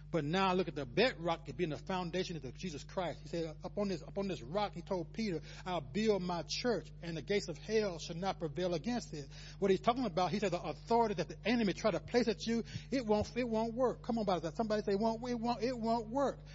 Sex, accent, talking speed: male, American, 270 wpm